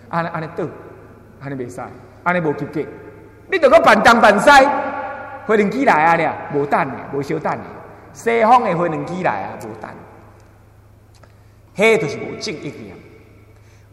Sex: male